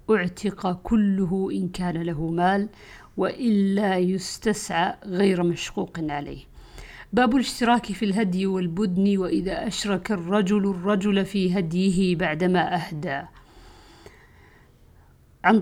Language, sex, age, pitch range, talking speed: Arabic, female, 50-69, 180-220 Hz, 95 wpm